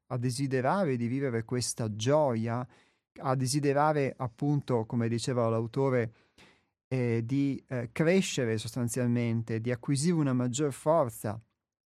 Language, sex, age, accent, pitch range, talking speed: Italian, male, 30-49, native, 115-140 Hz, 105 wpm